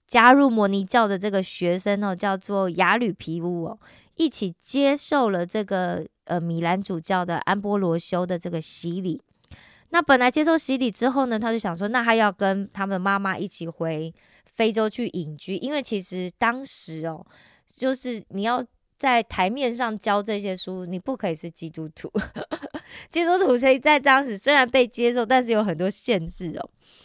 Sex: female